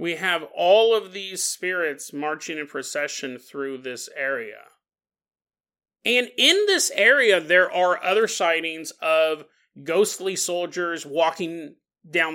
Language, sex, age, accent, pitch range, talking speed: English, male, 30-49, American, 140-205 Hz, 120 wpm